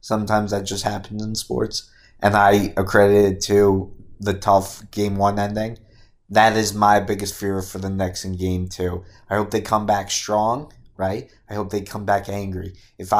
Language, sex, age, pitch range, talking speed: English, male, 20-39, 95-110 Hz, 180 wpm